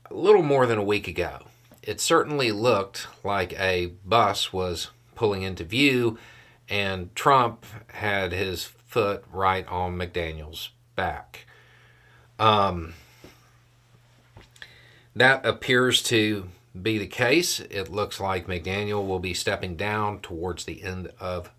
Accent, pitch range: American, 95-120 Hz